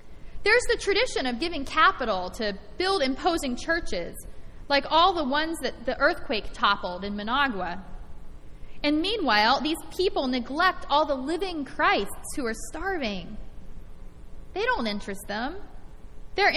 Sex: female